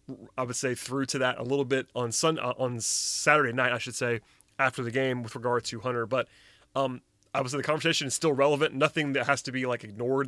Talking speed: 235 wpm